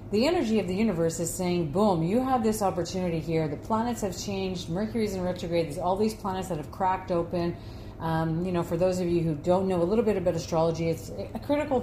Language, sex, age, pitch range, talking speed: English, female, 40-59, 155-190 Hz, 235 wpm